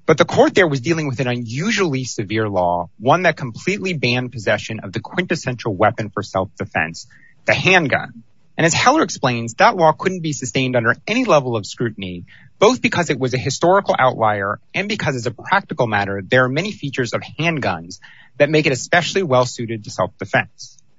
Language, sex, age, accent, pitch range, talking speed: English, male, 30-49, American, 115-175 Hz, 185 wpm